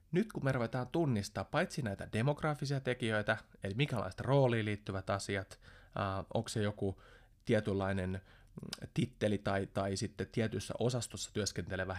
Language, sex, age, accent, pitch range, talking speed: Finnish, male, 30-49, native, 95-120 Hz, 125 wpm